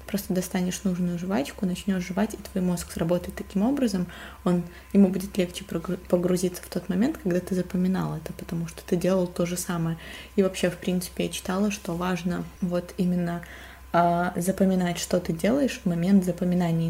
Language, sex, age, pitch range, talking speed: Russian, female, 20-39, 175-200 Hz, 180 wpm